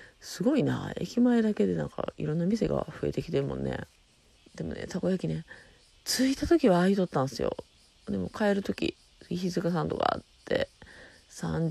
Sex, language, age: female, Japanese, 30-49